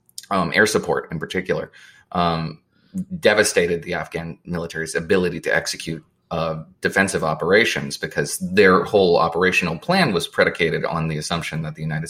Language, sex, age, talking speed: English, male, 30-49, 145 wpm